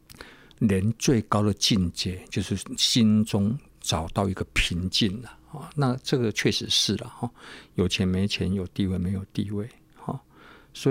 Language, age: Chinese, 50-69